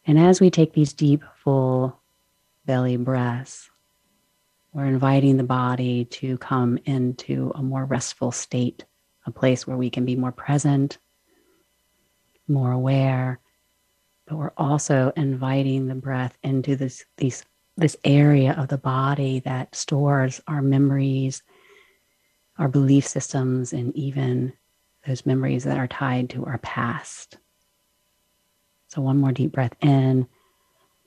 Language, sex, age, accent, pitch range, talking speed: English, female, 40-59, American, 125-145 Hz, 130 wpm